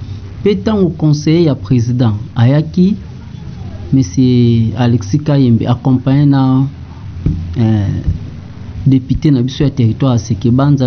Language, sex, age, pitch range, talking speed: English, male, 30-49, 115-155 Hz, 95 wpm